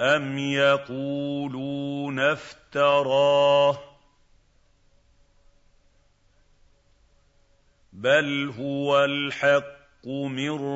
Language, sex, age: Arabic, male, 50-69